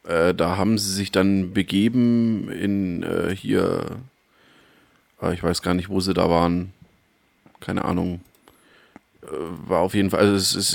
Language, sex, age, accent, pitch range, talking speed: German, male, 30-49, German, 95-105 Hz, 155 wpm